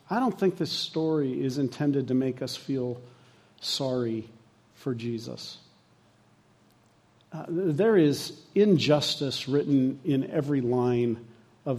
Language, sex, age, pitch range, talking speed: English, male, 50-69, 125-155 Hz, 115 wpm